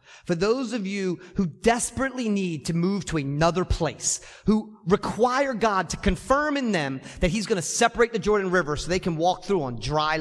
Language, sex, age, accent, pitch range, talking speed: English, male, 30-49, American, 175-245 Hz, 200 wpm